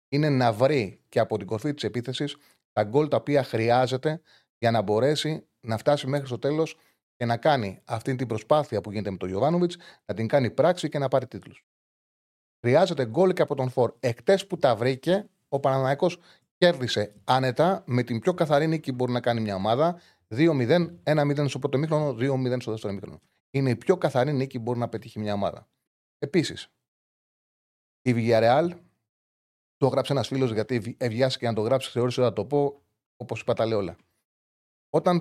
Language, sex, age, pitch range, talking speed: Greek, male, 30-49, 115-145 Hz, 180 wpm